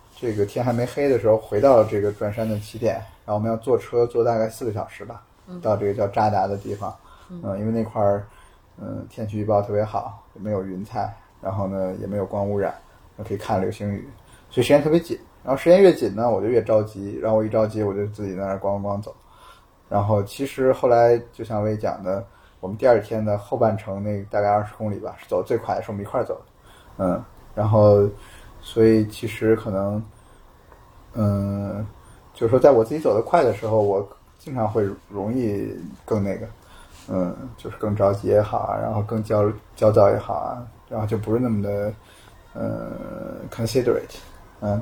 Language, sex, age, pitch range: Chinese, male, 20-39, 100-110 Hz